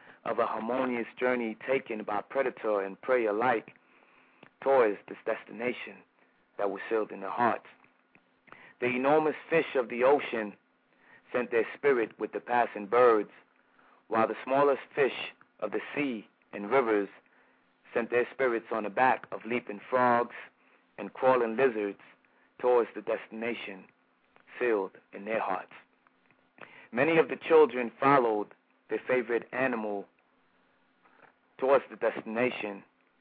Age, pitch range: 30-49, 110-135 Hz